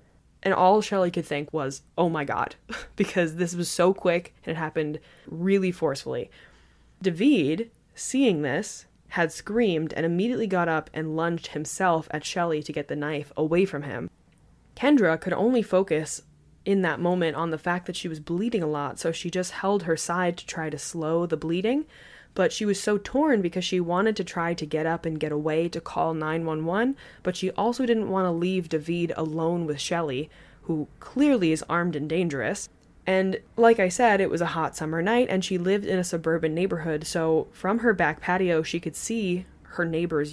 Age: 20-39